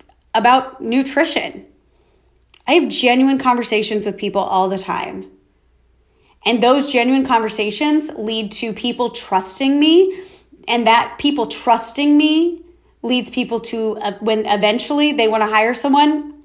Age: 30-49